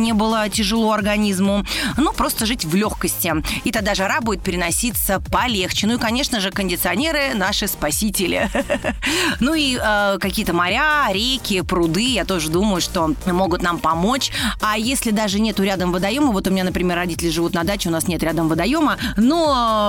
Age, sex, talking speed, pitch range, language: 30-49, female, 175 wpm, 175-220 Hz, Russian